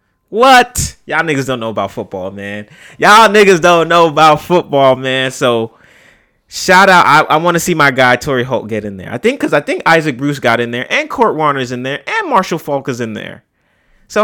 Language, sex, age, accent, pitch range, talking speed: English, male, 20-39, American, 120-175 Hz, 220 wpm